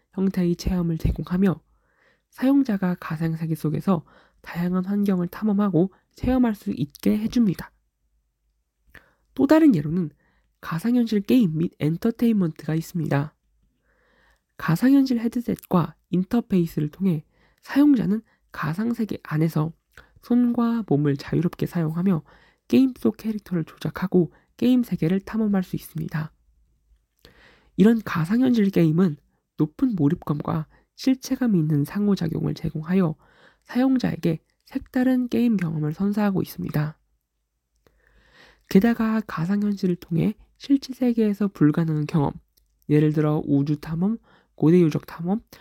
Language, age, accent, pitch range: Korean, 20-39, native, 155-225 Hz